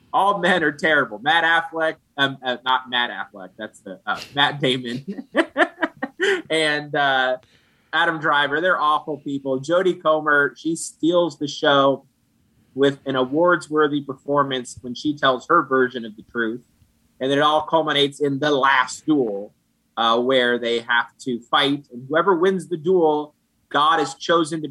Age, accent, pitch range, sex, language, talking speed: 30-49, American, 125-155 Hz, male, English, 160 wpm